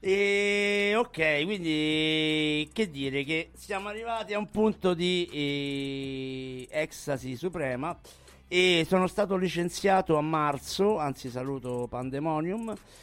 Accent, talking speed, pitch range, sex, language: native, 110 wpm, 130-180 Hz, male, Italian